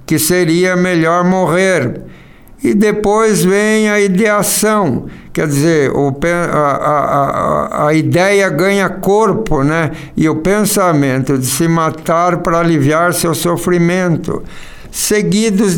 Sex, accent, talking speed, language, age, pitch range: male, Brazilian, 105 wpm, Portuguese, 60-79, 155-190 Hz